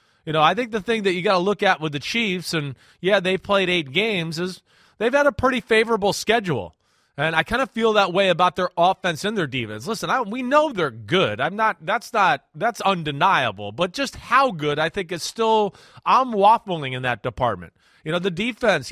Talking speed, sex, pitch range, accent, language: 220 wpm, male, 165-220 Hz, American, English